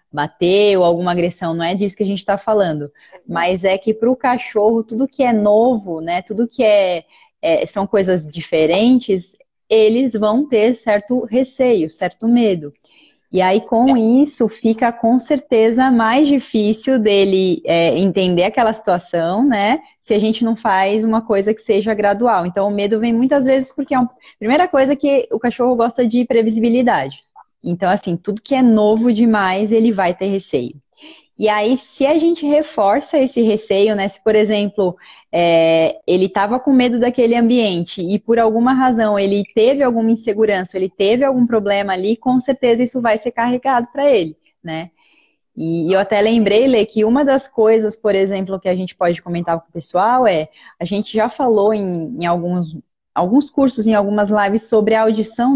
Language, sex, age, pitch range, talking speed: Portuguese, female, 20-39, 190-245 Hz, 180 wpm